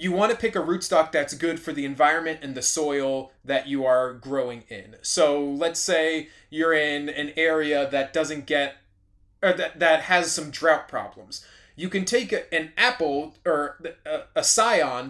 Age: 20-39